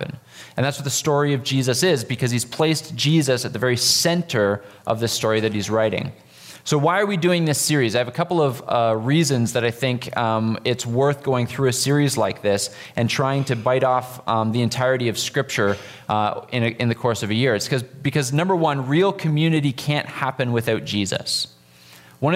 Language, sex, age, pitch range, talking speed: English, male, 20-39, 120-145 Hz, 210 wpm